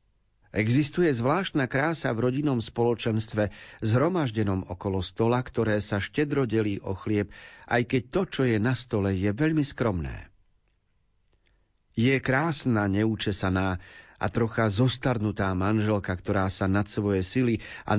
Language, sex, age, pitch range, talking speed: Slovak, male, 40-59, 95-125 Hz, 125 wpm